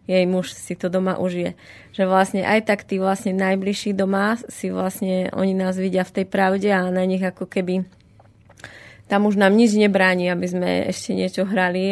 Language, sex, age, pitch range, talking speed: Slovak, female, 20-39, 185-215 Hz, 185 wpm